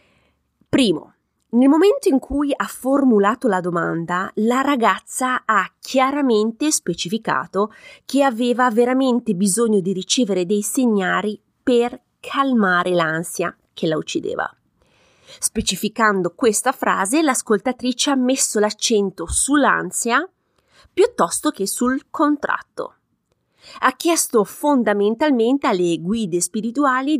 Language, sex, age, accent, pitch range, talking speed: Italian, female, 30-49, native, 195-270 Hz, 100 wpm